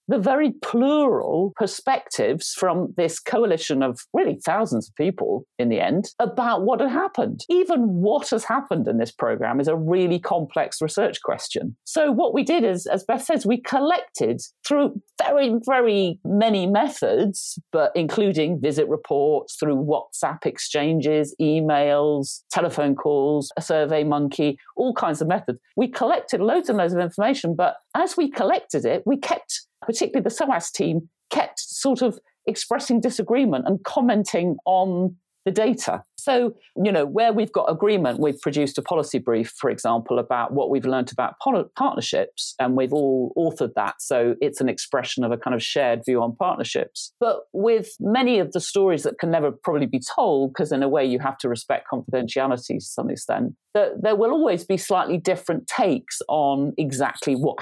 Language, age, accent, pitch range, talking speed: English, 50-69, British, 140-230 Hz, 170 wpm